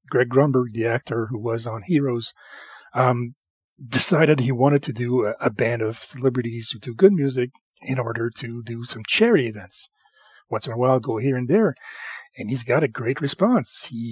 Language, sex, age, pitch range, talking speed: English, male, 40-59, 125-165 Hz, 190 wpm